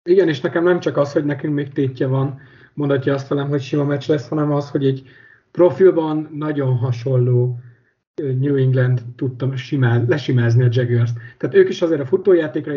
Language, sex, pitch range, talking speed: Hungarian, male, 125-150 Hz, 180 wpm